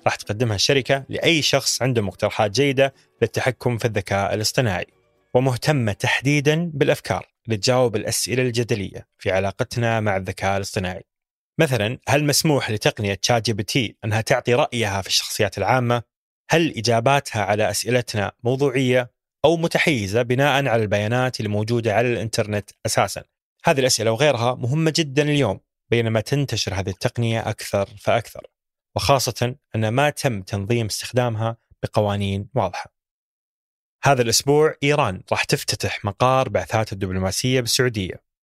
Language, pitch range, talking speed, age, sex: Arabic, 105-130 Hz, 120 wpm, 30-49, male